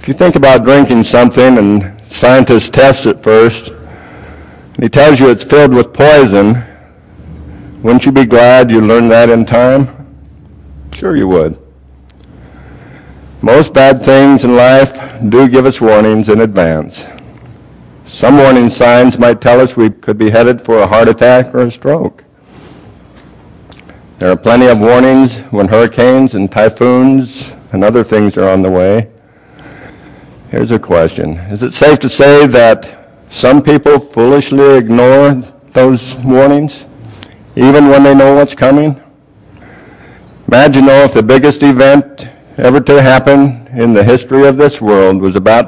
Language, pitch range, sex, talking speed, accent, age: English, 105-135 Hz, male, 150 wpm, American, 60-79